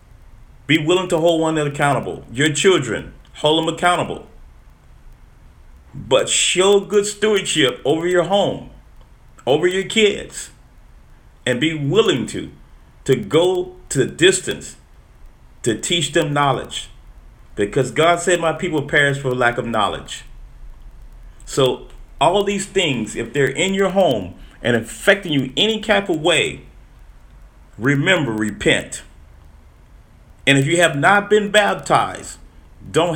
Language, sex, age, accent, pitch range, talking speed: English, male, 40-59, American, 125-185 Hz, 130 wpm